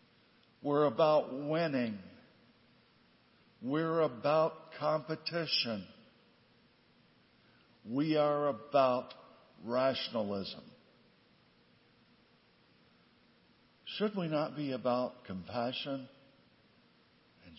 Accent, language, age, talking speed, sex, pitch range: American, English, 60-79, 60 wpm, male, 125-165 Hz